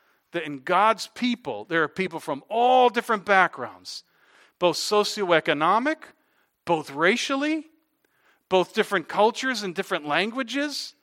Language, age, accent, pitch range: English, 50-69, American, 145-195 Hz